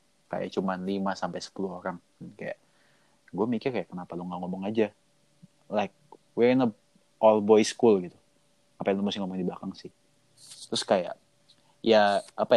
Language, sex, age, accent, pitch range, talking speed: Indonesian, male, 20-39, native, 95-115 Hz, 165 wpm